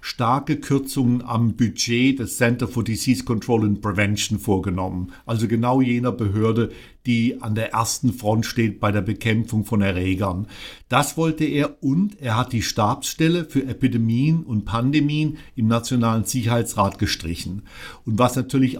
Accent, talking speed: German, 145 wpm